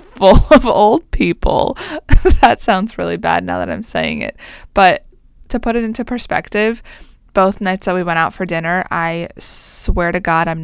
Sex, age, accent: female, 20-39, American